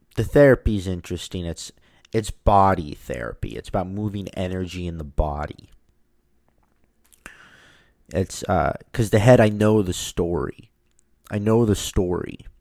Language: English